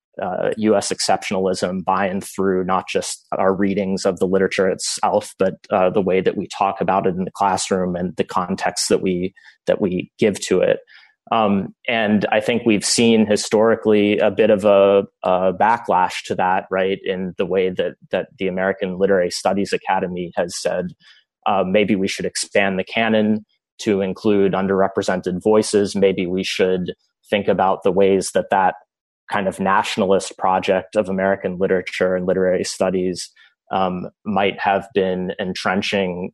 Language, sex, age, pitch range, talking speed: English, male, 20-39, 95-105 Hz, 165 wpm